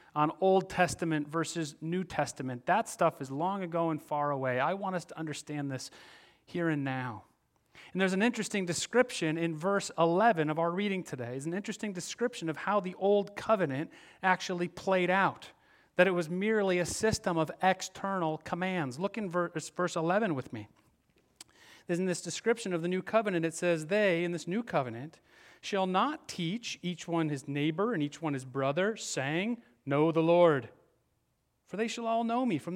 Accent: American